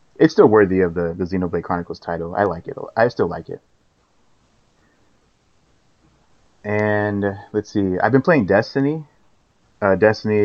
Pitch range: 90-110 Hz